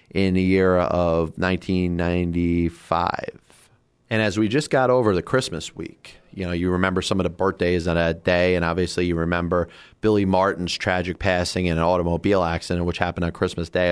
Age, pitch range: 30-49, 85-100 Hz